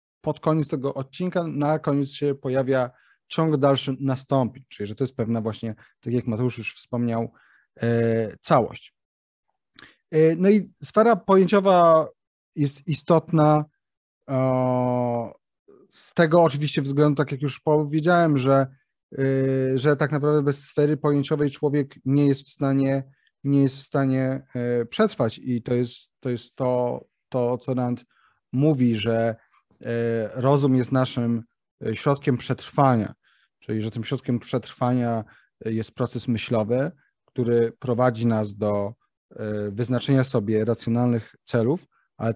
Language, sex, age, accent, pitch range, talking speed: Polish, male, 30-49, native, 120-155 Hz, 125 wpm